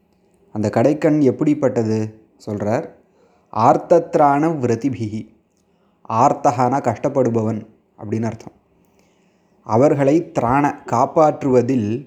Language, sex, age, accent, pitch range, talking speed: Tamil, male, 30-49, native, 115-145 Hz, 65 wpm